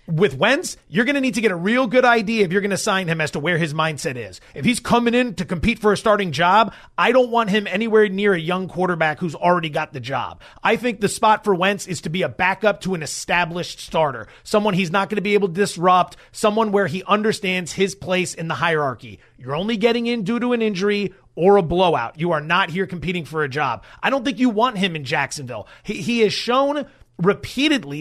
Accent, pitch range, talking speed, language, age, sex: American, 175-225 Hz, 240 wpm, English, 30-49, male